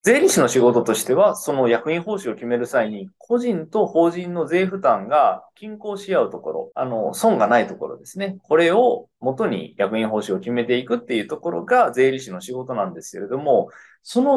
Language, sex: Japanese, male